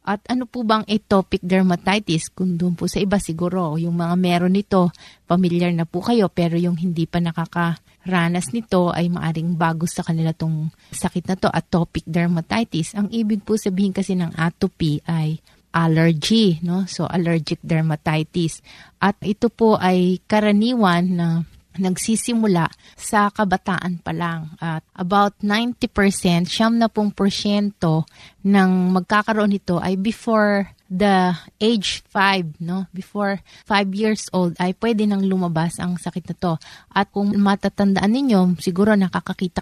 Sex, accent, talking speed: female, native, 140 wpm